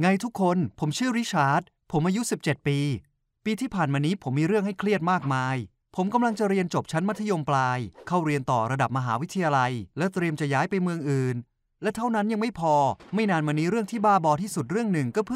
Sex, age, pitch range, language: male, 20-39, 140-195 Hz, Thai